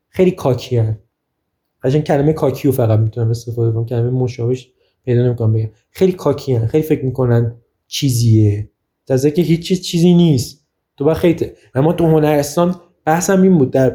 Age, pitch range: 20-39, 130-160 Hz